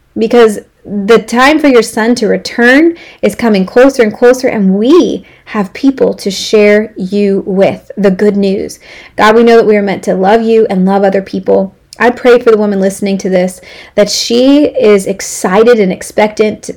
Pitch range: 195-230 Hz